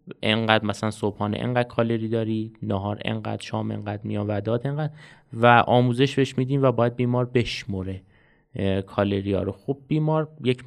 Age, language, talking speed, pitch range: 30-49, Persian, 135 wpm, 110-130 Hz